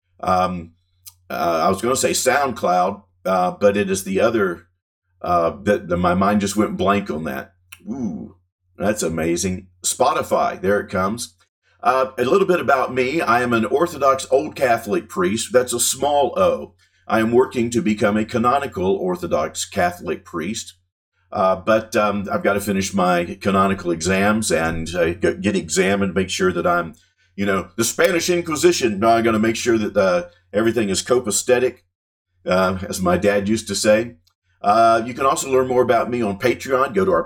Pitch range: 95-155 Hz